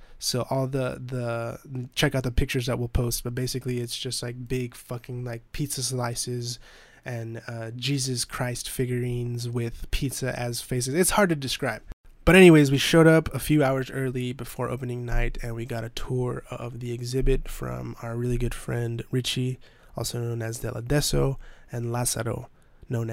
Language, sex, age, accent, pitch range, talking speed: English, male, 20-39, American, 115-130 Hz, 175 wpm